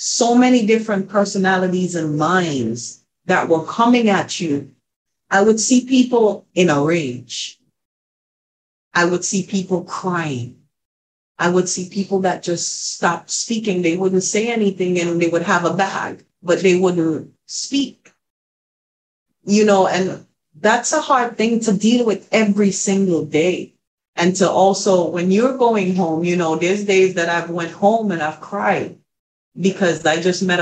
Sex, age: female, 40-59